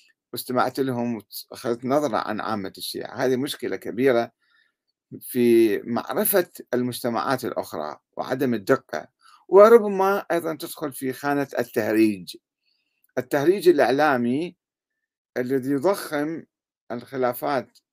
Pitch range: 115-165 Hz